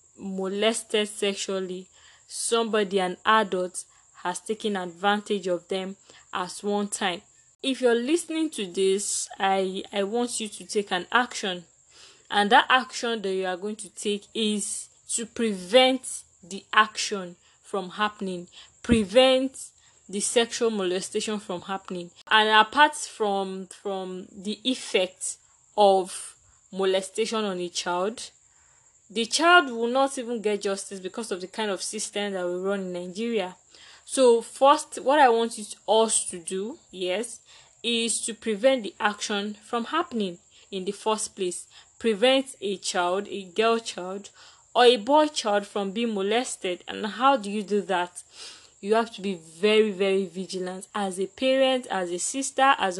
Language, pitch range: English, 190-230 Hz